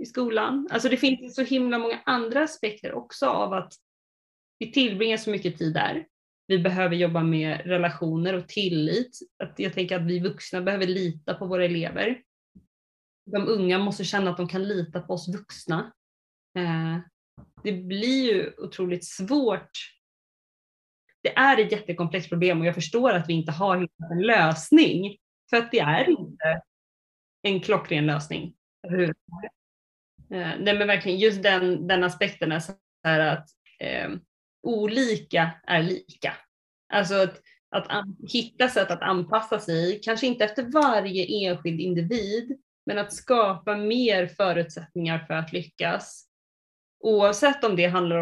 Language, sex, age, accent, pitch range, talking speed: Swedish, female, 20-39, native, 175-220 Hz, 145 wpm